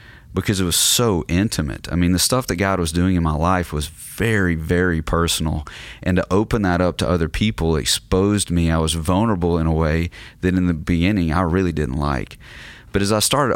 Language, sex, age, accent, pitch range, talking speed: English, male, 30-49, American, 80-95 Hz, 210 wpm